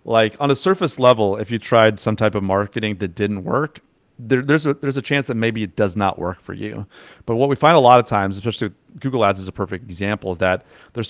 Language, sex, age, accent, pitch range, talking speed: English, male, 30-49, American, 95-115 Hz, 250 wpm